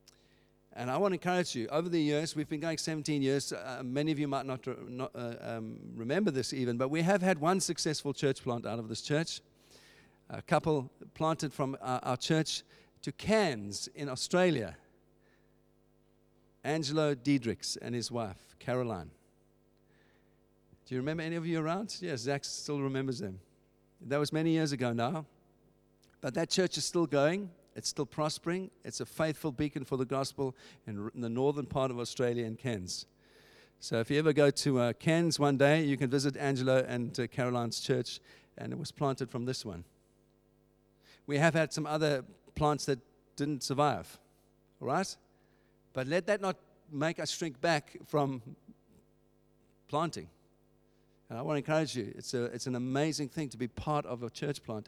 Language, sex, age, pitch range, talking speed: English, male, 50-69, 115-150 Hz, 175 wpm